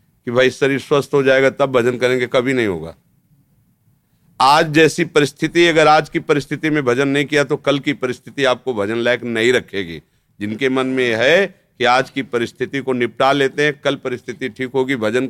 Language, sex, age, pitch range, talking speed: Hindi, male, 50-69, 110-135 Hz, 190 wpm